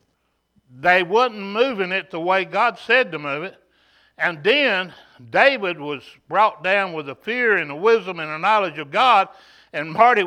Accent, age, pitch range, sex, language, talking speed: American, 60-79, 175-230 Hz, male, English, 175 wpm